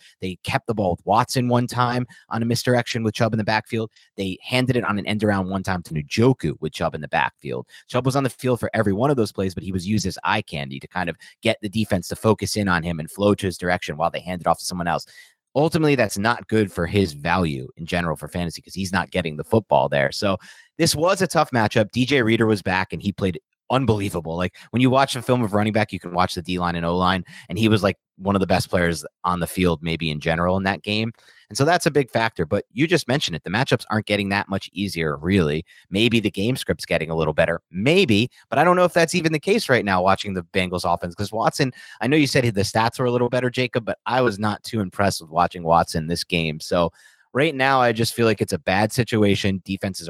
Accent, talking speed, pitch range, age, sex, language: American, 265 wpm, 90-120 Hz, 30-49, male, English